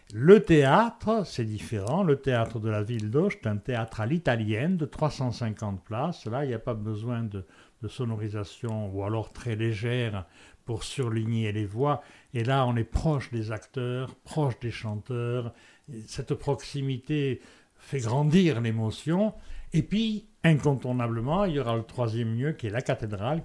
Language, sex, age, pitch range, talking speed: French, male, 60-79, 110-145 Hz, 160 wpm